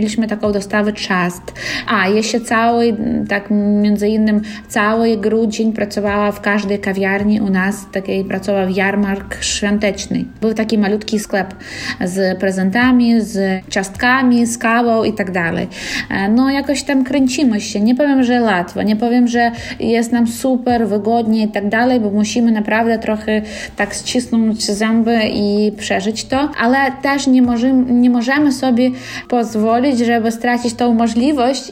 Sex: female